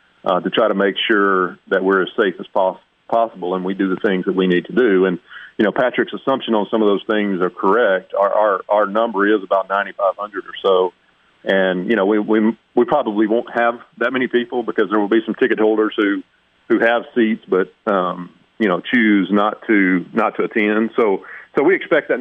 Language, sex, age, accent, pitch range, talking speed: English, male, 40-59, American, 95-110 Hz, 225 wpm